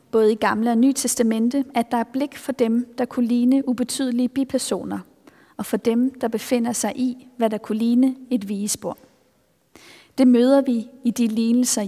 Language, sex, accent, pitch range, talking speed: Danish, female, native, 220-260 Hz, 175 wpm